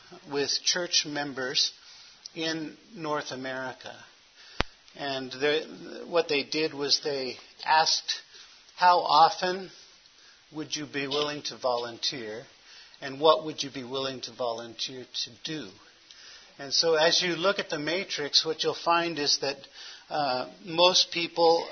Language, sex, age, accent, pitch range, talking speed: English, male, 50-69, American, 140-165 Hz, 130 wpm